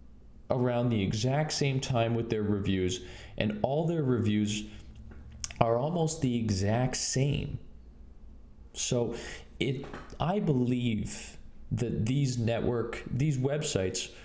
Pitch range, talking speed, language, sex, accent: 100-130 Hz, 110 wpm, English, male, American